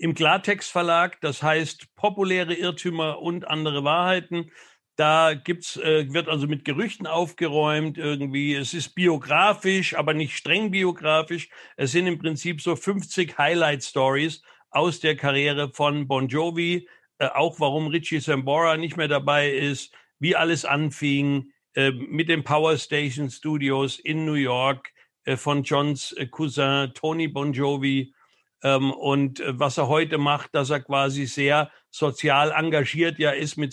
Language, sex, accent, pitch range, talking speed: German, male, German, 140-160 Hz, 150 wpm